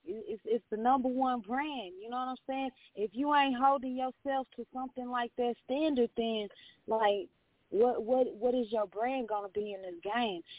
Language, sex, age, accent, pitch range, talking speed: English, female, 20-39, American, 210-265 Hz, 195 wpm